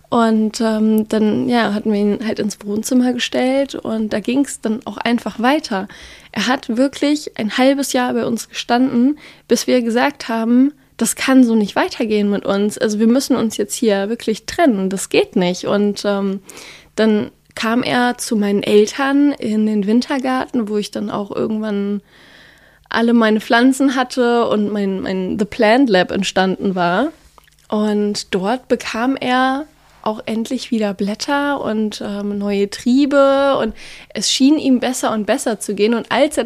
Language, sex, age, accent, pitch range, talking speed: German, female, 20-39, German, 205-255 Hz, 165 wpm